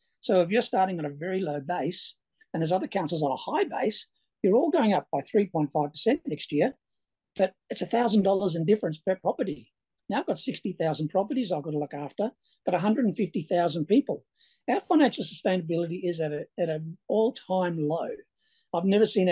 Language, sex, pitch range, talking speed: English, male, 175-230 Hz, 180 wpm